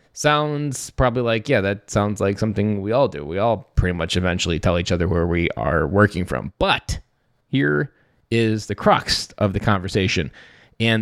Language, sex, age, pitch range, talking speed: English, male, 20-39, 100-140 Hz, 180 wpm